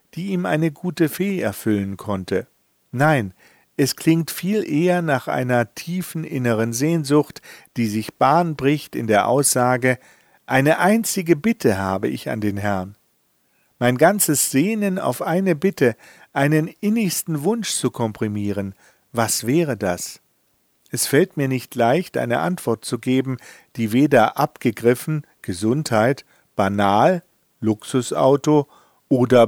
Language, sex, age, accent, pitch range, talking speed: German, male, 50-69, German, 115-170 Hz, 125 wpm